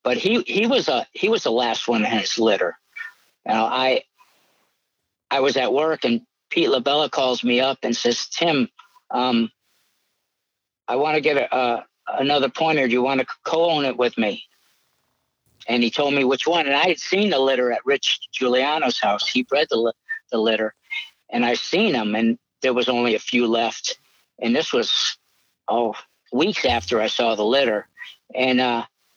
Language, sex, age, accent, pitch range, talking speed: English, male, 60-79, American, 125-175 Hz, 185 wpm